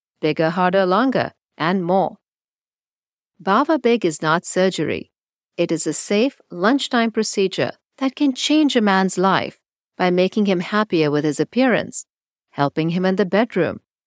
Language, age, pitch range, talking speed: English, 50-69, 170-235 Hz, 145 wpm